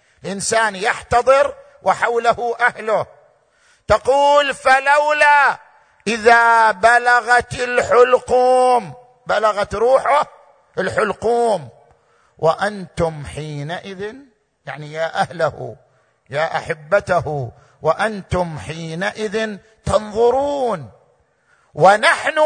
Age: 50-69